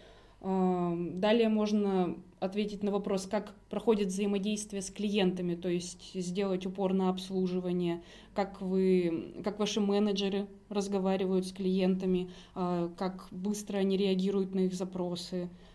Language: Russian